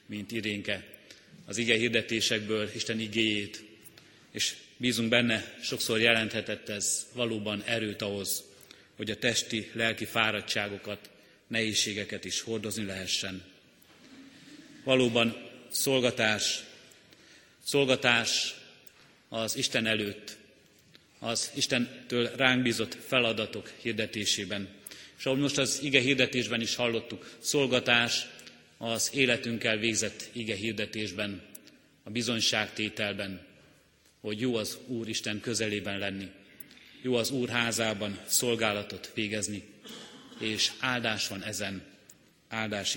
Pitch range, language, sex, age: 105-120 Hz, Hungarian, male, 30-49